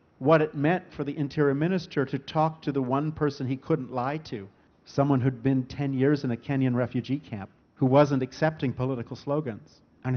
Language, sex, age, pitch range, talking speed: English, male, 50-69, 120-145 Hz, 195 wpm